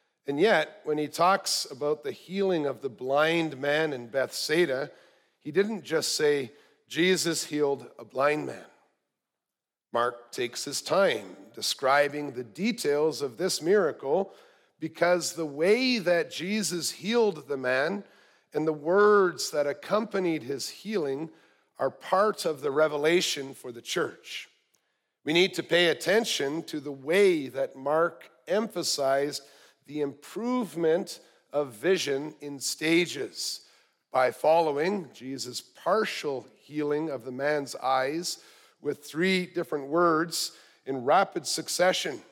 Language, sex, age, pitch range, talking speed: English, male, 50-69, 145-185 Hz, 125 wpm